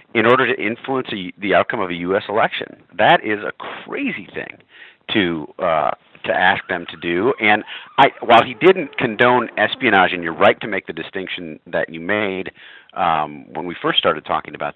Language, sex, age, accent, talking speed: English, male, 40-59, American, 190 wpm